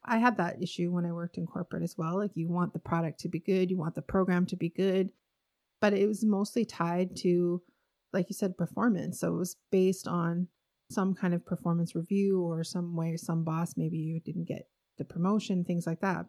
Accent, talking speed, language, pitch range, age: American, 220 wpm, English, 175-205 Hz, 30-49